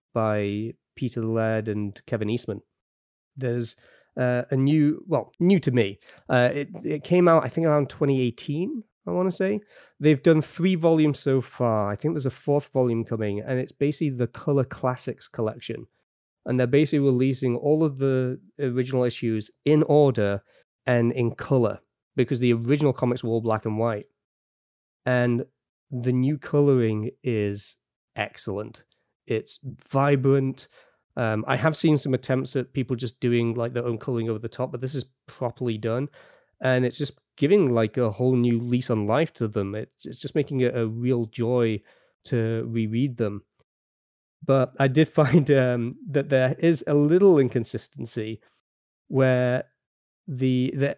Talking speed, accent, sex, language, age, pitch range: 160 wpm, British, male, English, 20-39, 115-145 Hz